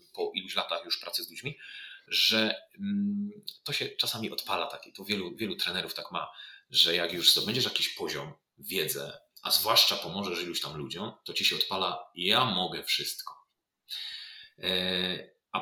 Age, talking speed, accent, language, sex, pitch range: 30-49, 150 wpm, native, Polish, male, 140-210 Hz